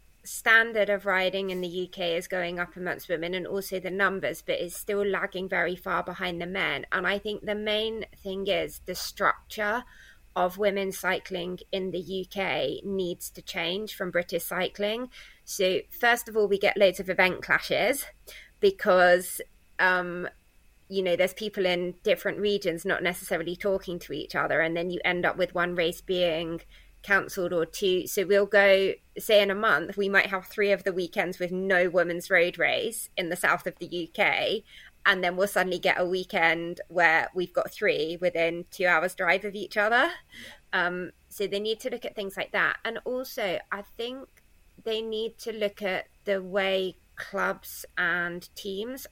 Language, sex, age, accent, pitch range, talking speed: English, female, 20-39, British, 180-205 Hz, 180 wpm